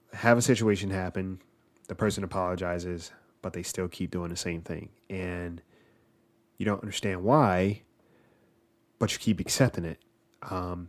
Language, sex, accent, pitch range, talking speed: English, male, American, 90-110 Hz, 145 wpm